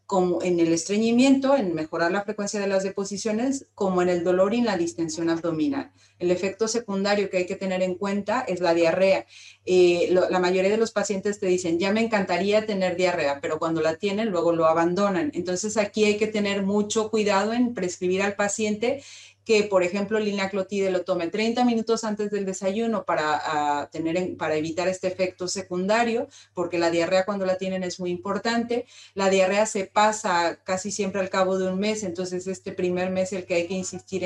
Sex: female